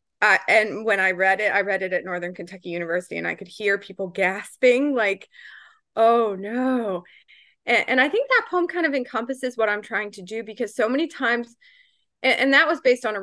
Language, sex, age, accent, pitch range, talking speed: English, female, 20-39, American, 185-225 Hz, 215 wpm